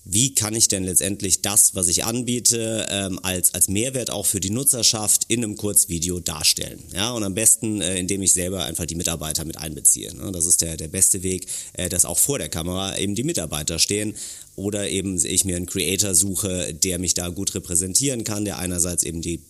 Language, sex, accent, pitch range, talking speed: German, male, German, 90-105 Hz, 195 wpm